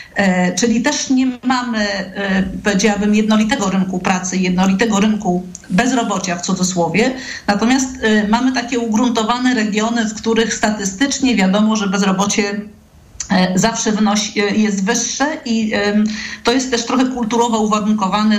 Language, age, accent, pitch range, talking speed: Polish, 50-69, native, 195-230 Hz, 110 wpm